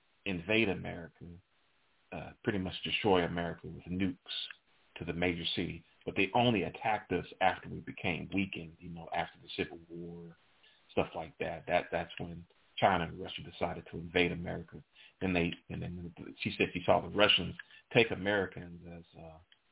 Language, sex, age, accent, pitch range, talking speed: English, male, 40-59, American, 85-105 Hz, 165 wpm